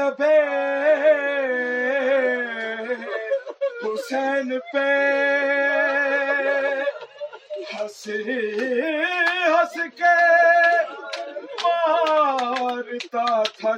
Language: Urdu